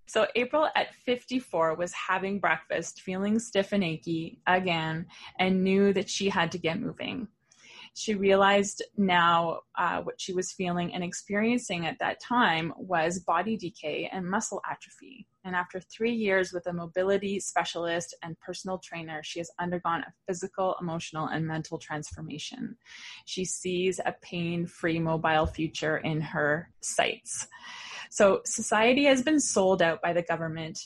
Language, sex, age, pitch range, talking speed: English, female, 20-39, 165-195 Hz, 150 wpm